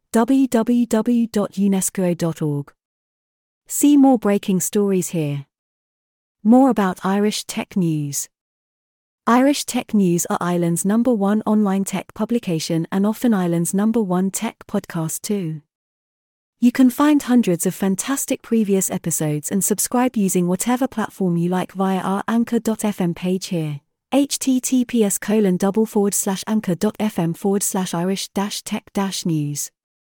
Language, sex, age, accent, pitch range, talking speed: English, female, 30-49, British, 180-230 Hz, 100 wpm